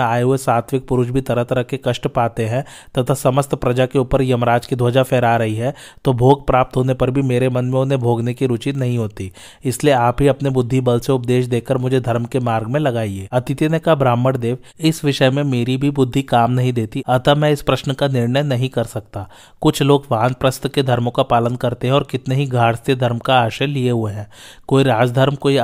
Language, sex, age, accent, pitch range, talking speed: Hindi, male, 30-49, native, 120-135 Hz, 120 wpm